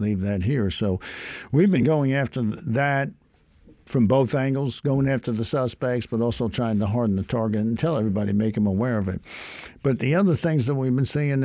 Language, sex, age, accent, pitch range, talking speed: English, male, 60-79, American, 105-130 Hz, 205 wpm